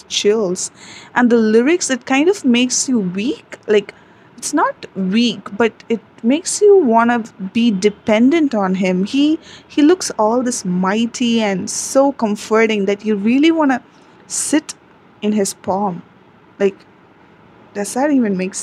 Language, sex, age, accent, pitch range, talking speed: English, female, 20-39, Indian, 195-245 Hz, 150 wpm